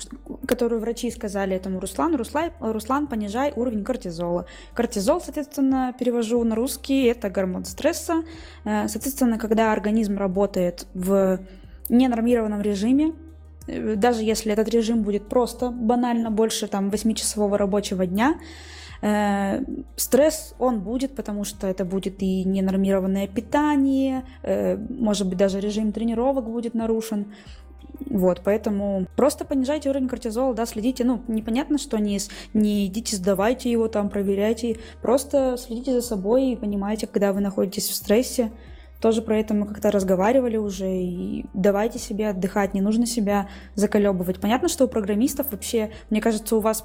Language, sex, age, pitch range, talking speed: Russian, female, 20-39, 200-245 Hz, 135 wpm